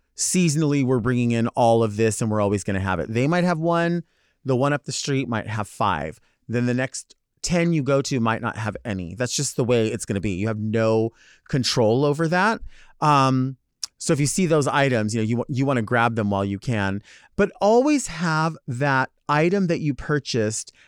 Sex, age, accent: male, 30-49, American